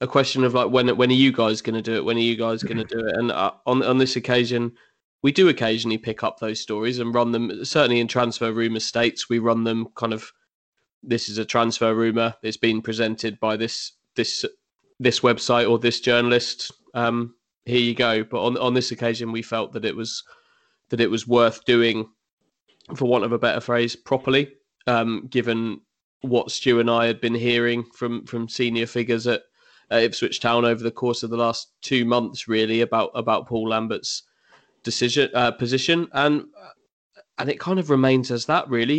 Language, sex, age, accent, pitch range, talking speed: English, male, 20-39, British, 115-135 Hz, 205 wpm